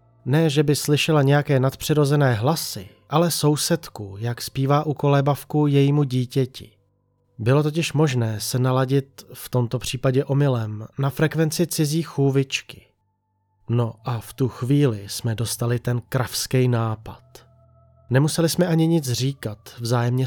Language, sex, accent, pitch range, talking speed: Czech, male, native, 115-140 Hz, 130 wpm